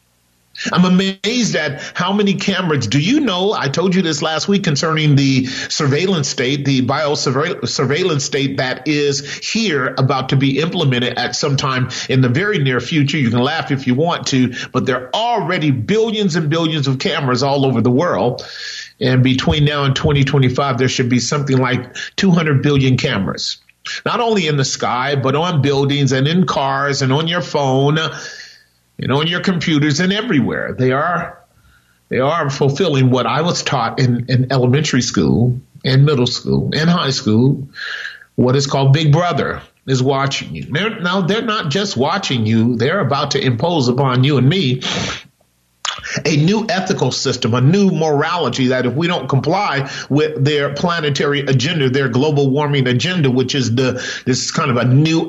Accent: American